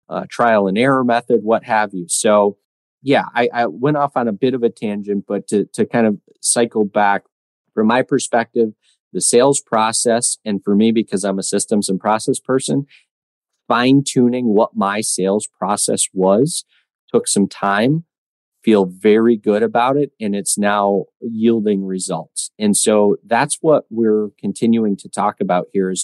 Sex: male